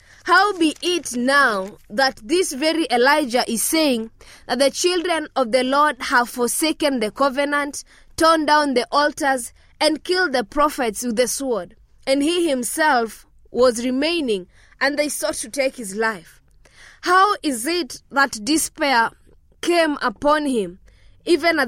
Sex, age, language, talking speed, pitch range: female, 20-39, English, 145 wpm, 245-315 Hz